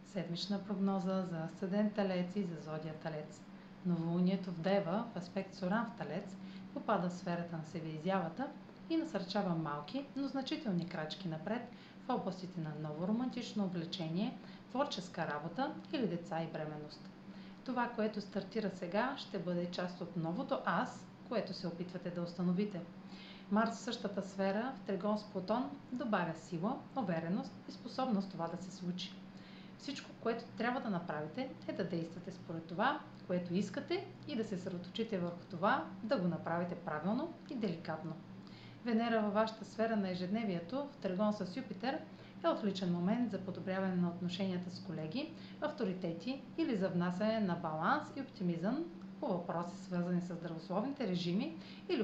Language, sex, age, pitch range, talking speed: Bulgarian, female, 40-59, 175-220 Hz, 150 wpm